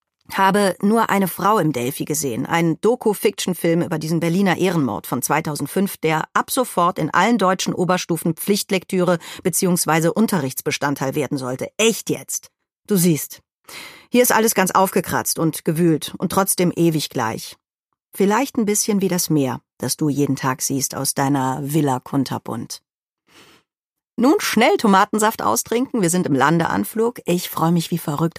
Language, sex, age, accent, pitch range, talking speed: German, female, 40-59, German, 150-195 Hz, 150 wpm